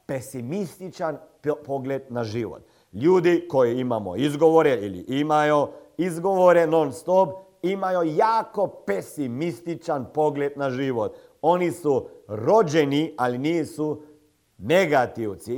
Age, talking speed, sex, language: 50-69, 100 wpm, male, Croatian